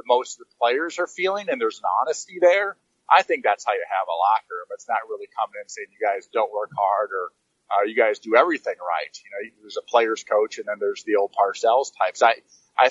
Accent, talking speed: American, 245 wpm